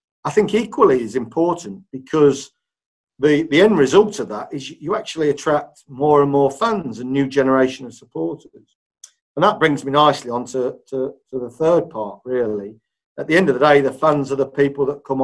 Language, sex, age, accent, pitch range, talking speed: English, male, 50-69, British, 130-160 Hz, 200 wpm